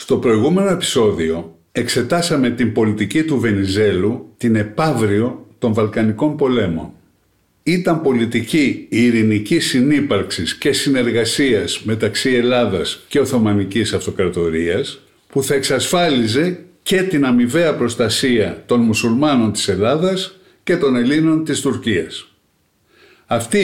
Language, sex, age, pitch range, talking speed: Greek, male, 60-79, 115-185 Hz, 105 wpm